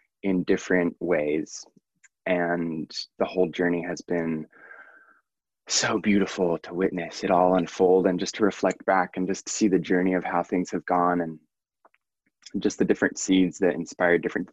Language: English